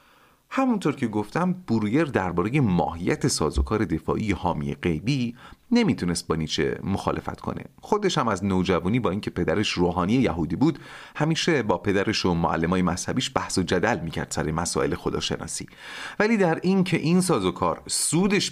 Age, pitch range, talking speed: 30-49, 85-145 Hz, 145 wpm